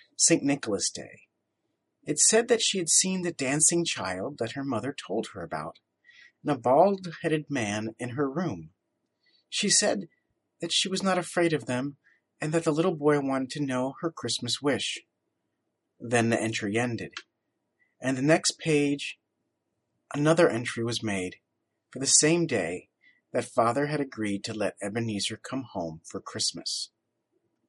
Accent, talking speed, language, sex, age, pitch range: American, 155 wpm, English, male, 40-59, 115-165 Hz